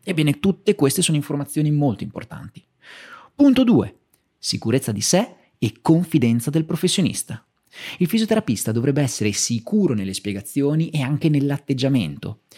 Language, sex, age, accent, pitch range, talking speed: Italian, male, 30-49, native, 115-170 Hz, 125 wpm